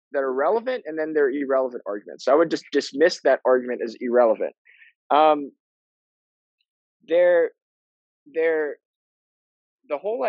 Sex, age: male, 20-39